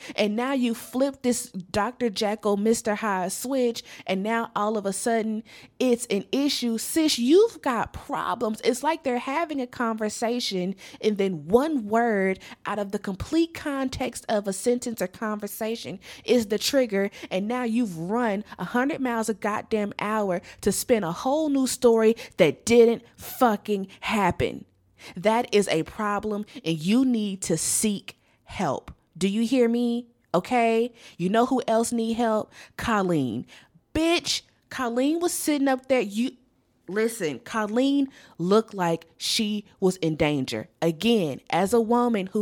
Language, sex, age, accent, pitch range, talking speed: English, female, 20-39, American, 190-245 Hz, 150 wpm